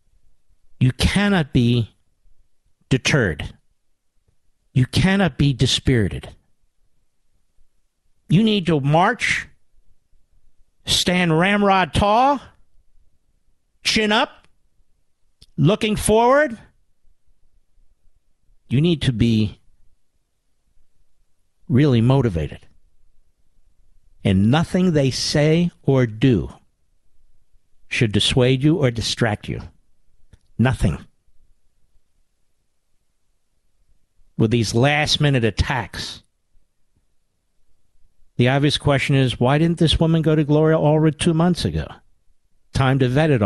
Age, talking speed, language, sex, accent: 50-69, 85 wpm, English, male, American